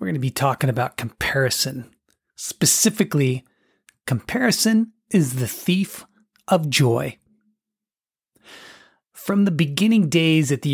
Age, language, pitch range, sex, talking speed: 40-59, English, 130-165 Hz, male, 110 wpm